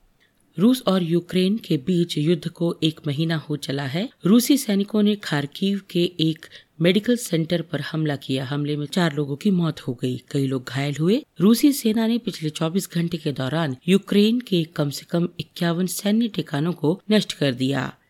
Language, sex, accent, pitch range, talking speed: Hindi, female, native, 150-195 Hz, 180 wpm